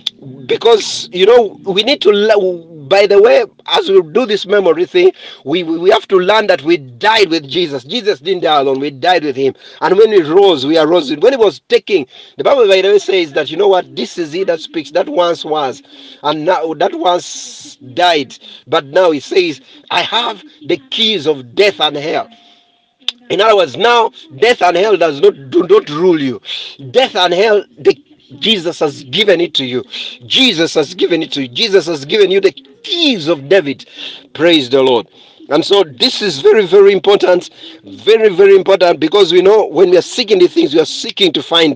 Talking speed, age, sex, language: 205 wpm, 50-69, male, English